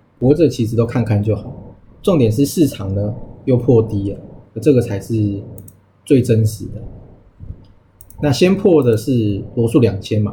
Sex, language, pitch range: male, Chinese, 100-125 Hz